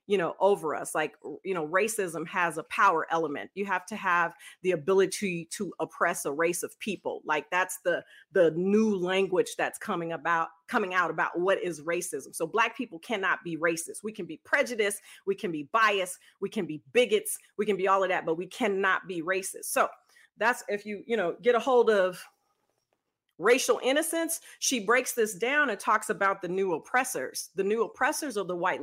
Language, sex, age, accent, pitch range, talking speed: English, female, 40-59, American, 185-245 Hz, 200 wpm